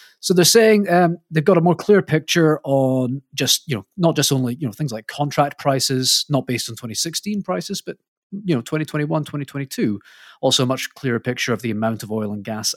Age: 30-49